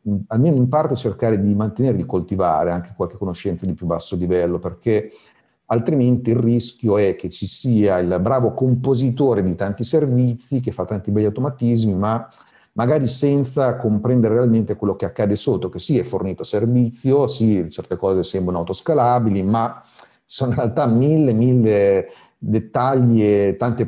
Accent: native